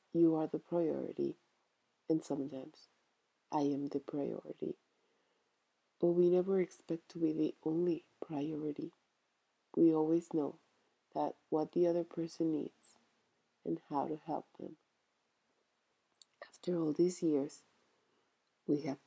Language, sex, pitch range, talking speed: English, female, 145-175 Hz, 125 wpm